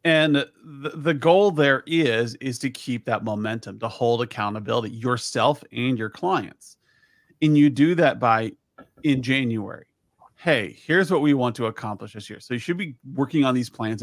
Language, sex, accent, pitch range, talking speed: English, male, American, 115-140 Hz, 175 wpm